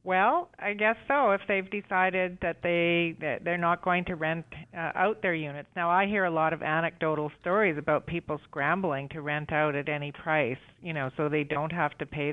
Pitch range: 150-185 Hz